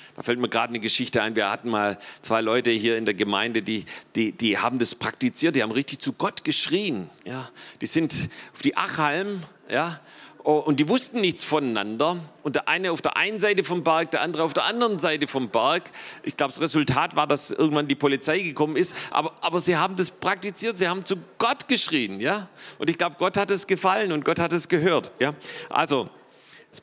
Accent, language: German, German